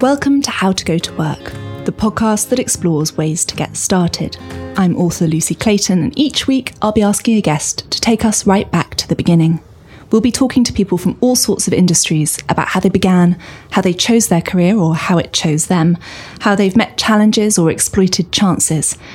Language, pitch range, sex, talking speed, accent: English, 165-215 Hz, female, 205 wpm, British